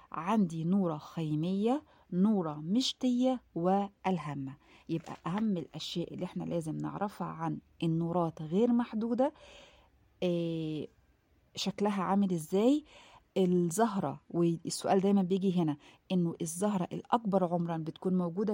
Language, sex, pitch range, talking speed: Arabic, female, 170-220 Hz, 100 wpm